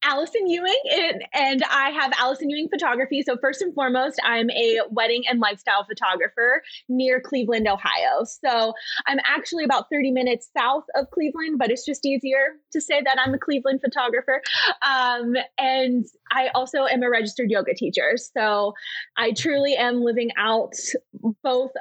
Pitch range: 220-270 Hz